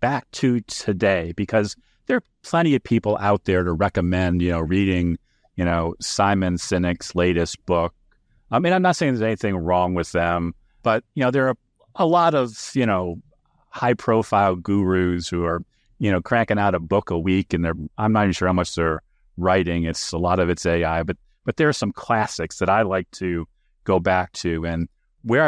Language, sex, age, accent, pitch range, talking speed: English, male, 40-59, American, 90-110 Hz, 205 wpm